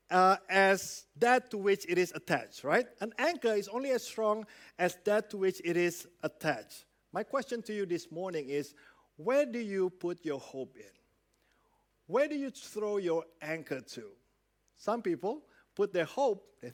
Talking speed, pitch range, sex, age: 175 wpm, 185-245 Hz, male, 50-69